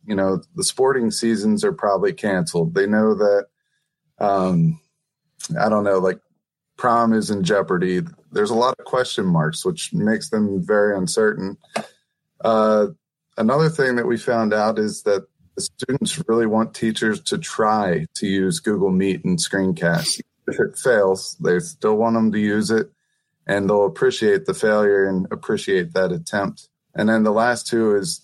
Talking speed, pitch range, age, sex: 165 wpm, 95-140 Hz, 30-49, male